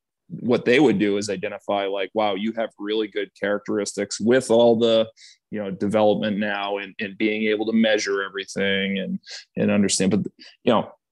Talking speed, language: 180 wpm, English